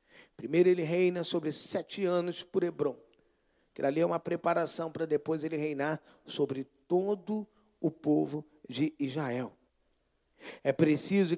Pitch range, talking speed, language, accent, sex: 150-210 Hz, 130 wpm, Portuguese, Brazilian, male